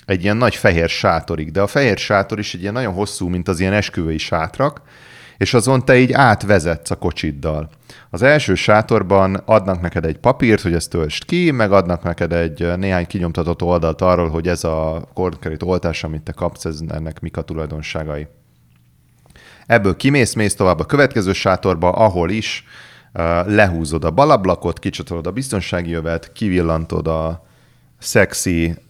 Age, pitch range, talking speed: 30-49, 80-100 Hz, 155 wpm